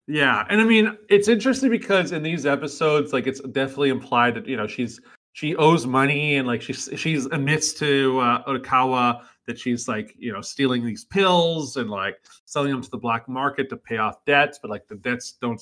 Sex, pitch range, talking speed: male, 115-150 Hz, 210 wpm